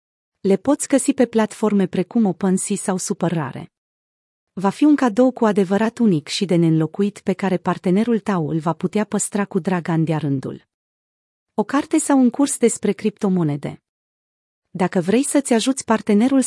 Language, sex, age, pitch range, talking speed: Romanian, female, 30-49, 175-225 Hz, 155 wpm